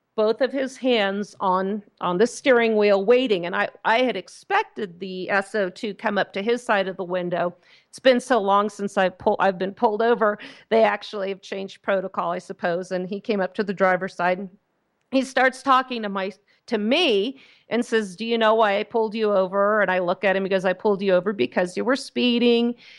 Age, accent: 40-59, American